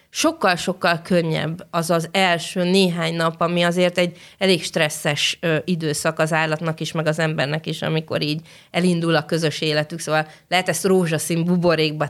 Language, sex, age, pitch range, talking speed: Hungarian, female, 30-49, 160-190 Hz, 155 wpm